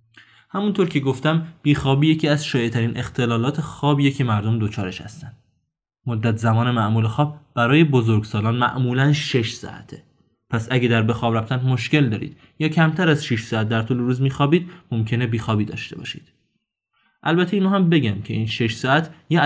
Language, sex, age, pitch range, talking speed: Persian, male, 20-39, 110-145 Hz, 165 wpm